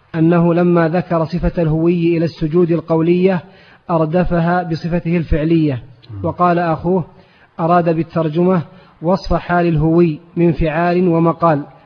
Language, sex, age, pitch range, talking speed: Arabic, male, 30-49, 165-175 Hz, 105 wpm